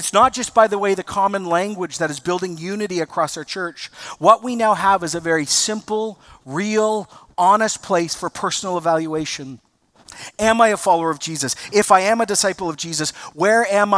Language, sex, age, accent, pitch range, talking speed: English, male, 40-59, American, 155-195 Hz, 195 wpm